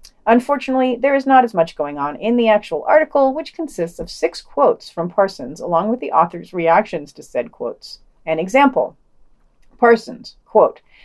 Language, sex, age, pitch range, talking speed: English, female, 40-59, 185-270 Hz, 170 wpm